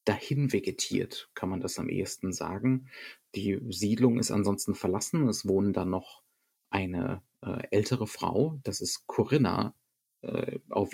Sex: male